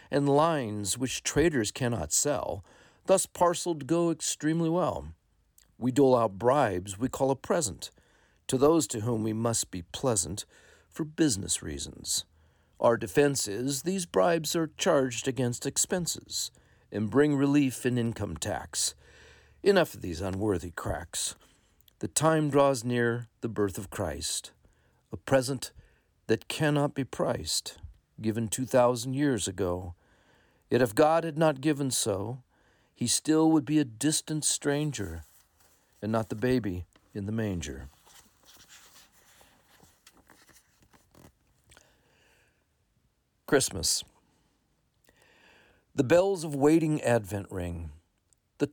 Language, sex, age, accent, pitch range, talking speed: English, male, 50-69, American, 100-140 Hz, 120 wpm